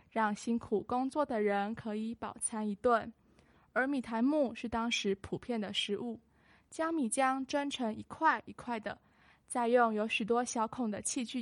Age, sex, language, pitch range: 10-29, female, Chinese, 220-270 Hz